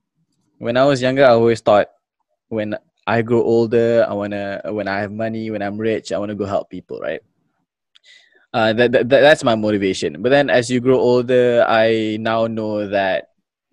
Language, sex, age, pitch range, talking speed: English, male, 20-39, 100-115 Hz, 190 wpm